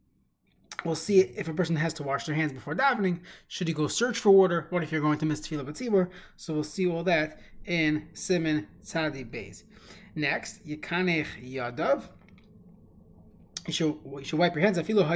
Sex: male